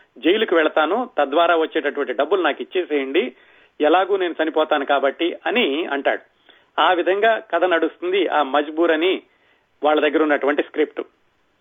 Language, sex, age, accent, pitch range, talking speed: Telugu, male, 30-49, native, 155-195 Hz, 125 wpm